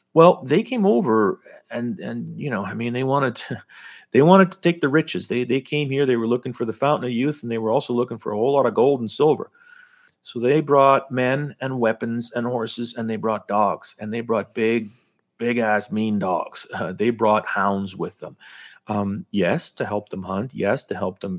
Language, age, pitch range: English, 40-59, 105-130 Hz